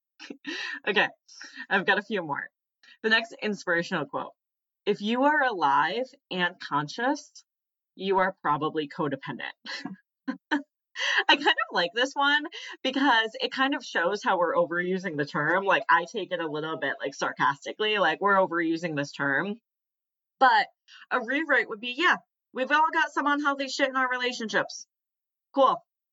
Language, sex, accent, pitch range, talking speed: English, female, American, 165-250 Hz, 150 wpm